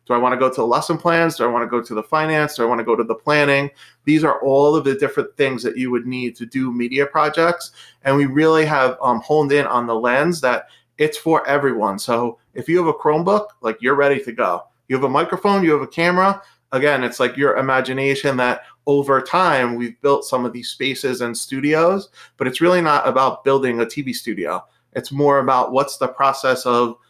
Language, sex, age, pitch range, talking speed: English, male, 30-49, 120-150 Hz, 235 wpm